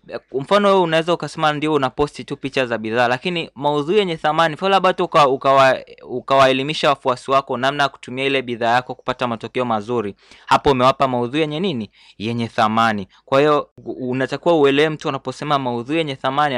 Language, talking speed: Swahili, 165 wpm